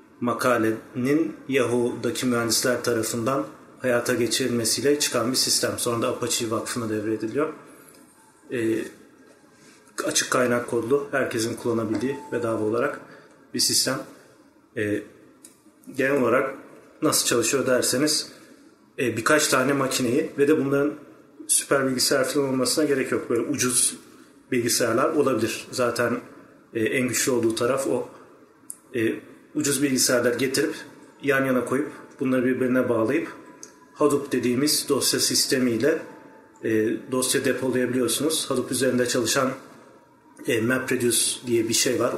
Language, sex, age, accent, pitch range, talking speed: Turkish, male, 40-59, native, 120-145 Hz, 110 wpm